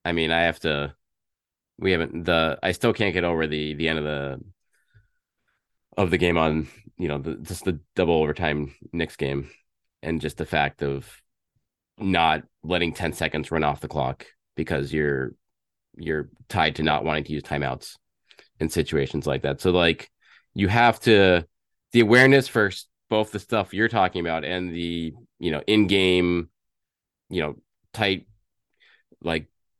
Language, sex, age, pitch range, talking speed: English, male, 20-39, 80-105 Hz, 165 wpm